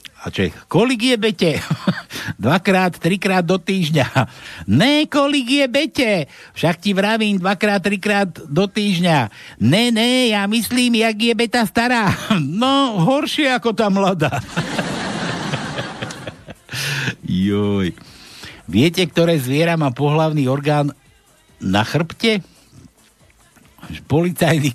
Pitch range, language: 130-205 Hz, Slovak